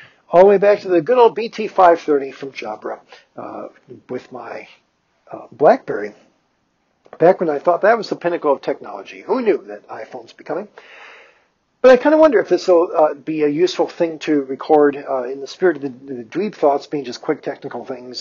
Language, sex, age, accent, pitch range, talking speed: English, male, 50-69, American, 135-175 Hz, 200 wpm